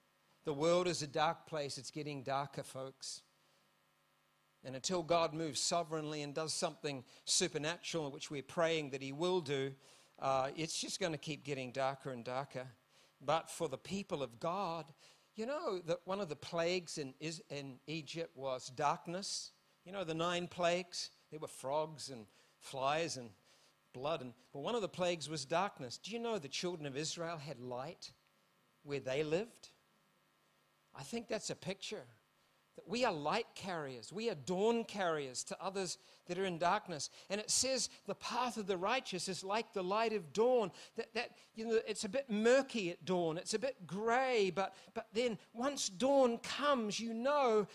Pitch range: 155-245 Hz